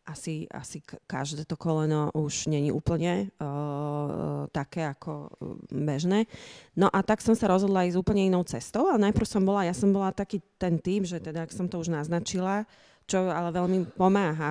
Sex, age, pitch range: female, 30-49, 150-180 Hz